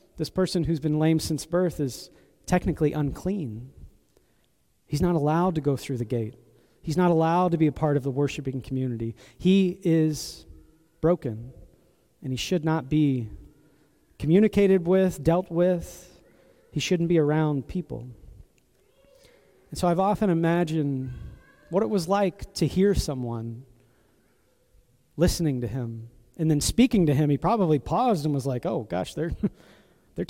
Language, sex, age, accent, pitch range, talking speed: English, male, 30-49, American, 130-180 Hz, 150 wpm